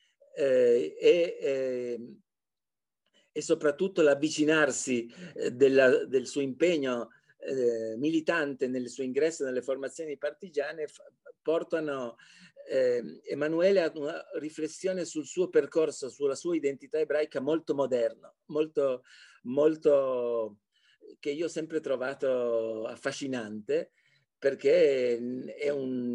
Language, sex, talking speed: Italian, male, 95 wpm